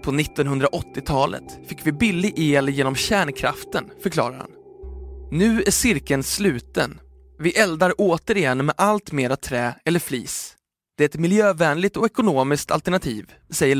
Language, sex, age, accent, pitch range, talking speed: Swedish, male, 20-39, native, 135-195 Hz, 135 wpm